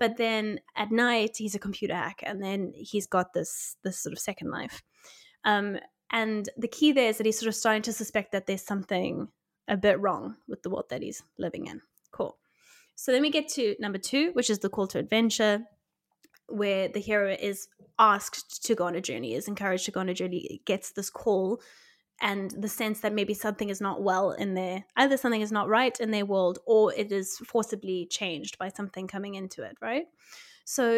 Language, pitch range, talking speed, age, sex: English, 200-230 Hz, 210 wpm, 10-29, female